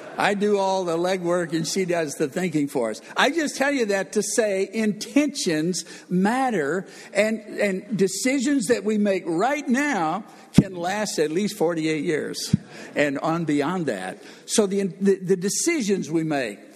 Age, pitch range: 60-79, 165-220 Hz